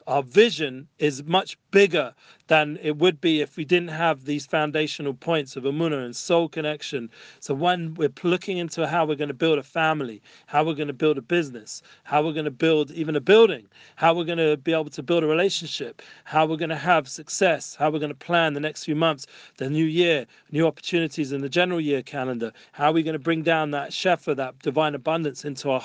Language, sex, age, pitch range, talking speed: English, male, 40-59, 140-165 Hz, 225 wpm